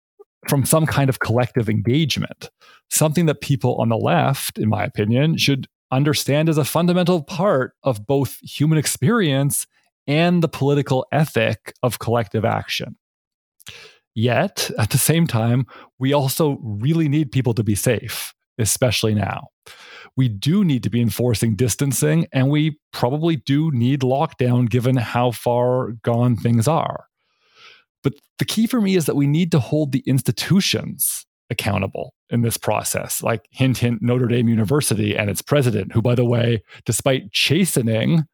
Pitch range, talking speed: 120-150 Hz, 155 wpm